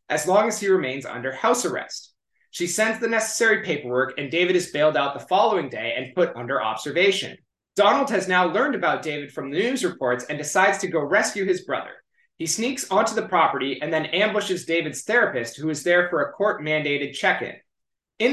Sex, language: male, English